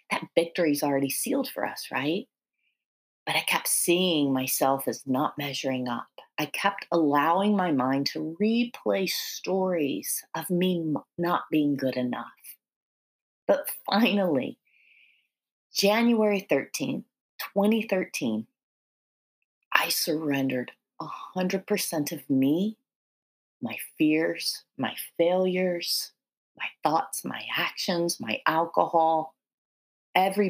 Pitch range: 145-200 Hz